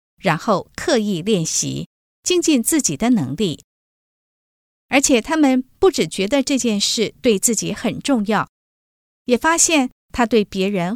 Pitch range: 175-255 Hz